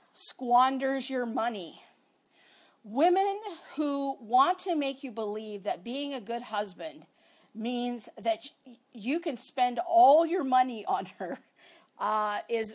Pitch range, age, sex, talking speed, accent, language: 220-300 Hz, 50-69, female, 125 wpm, American, English